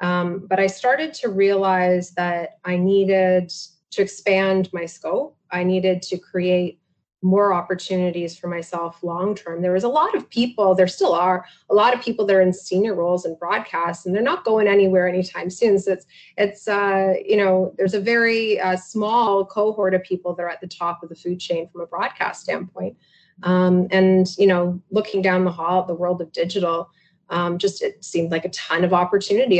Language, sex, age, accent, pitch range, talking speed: English, female, 30-49, American, 175-200 Hz, 195 wpm